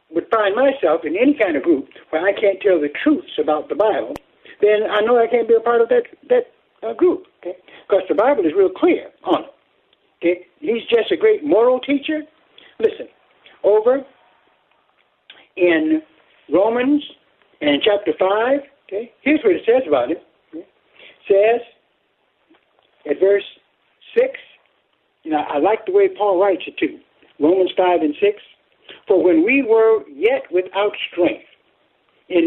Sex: male